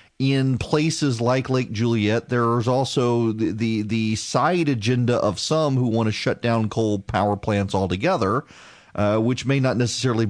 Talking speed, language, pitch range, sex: 170 wpm, English, 95-130 Hz, male